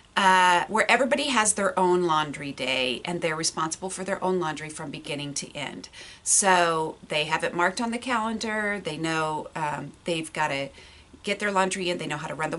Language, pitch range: English, 160-225 Hz